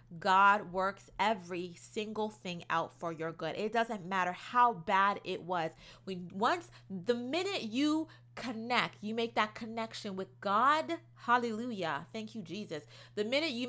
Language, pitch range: English, 170-225 Hz